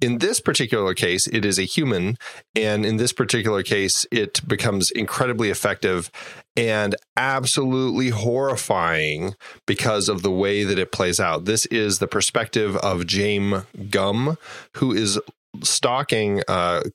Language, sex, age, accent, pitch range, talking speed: English, male, 30-49, American, 90-110 Hz, 140 wpm